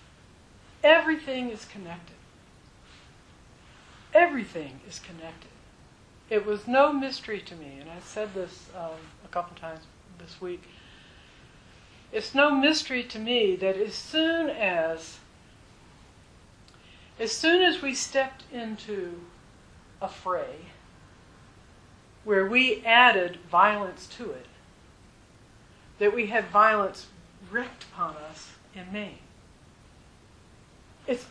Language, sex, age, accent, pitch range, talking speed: English, female, 60-79, American, 185-280 Hz, 105 wpm